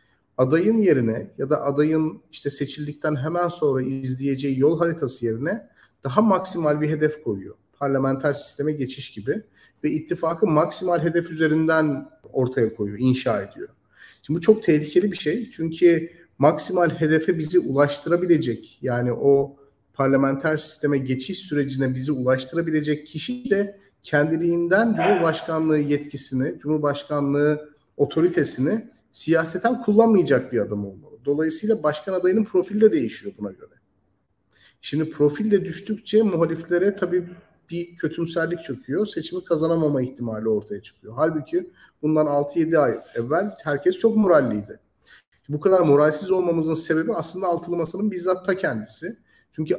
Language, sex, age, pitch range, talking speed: Turkish, male, 40-59, 140-175 Hz, 125 wpm